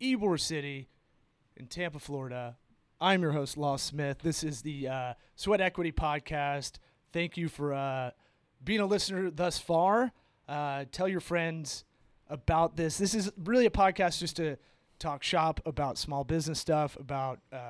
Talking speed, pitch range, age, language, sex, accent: 155 wpm, 130-165 Hz, 30-49, English, male, American